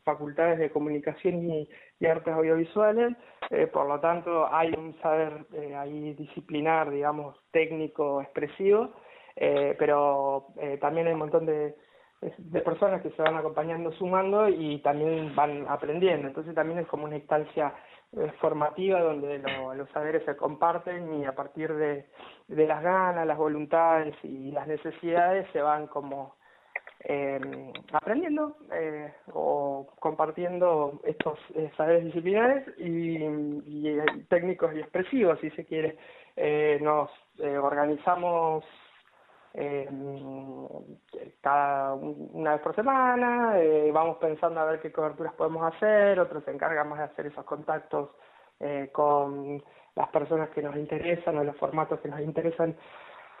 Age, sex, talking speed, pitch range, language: 20-39, male, 140 wpm, 145-170 Hz, Spanish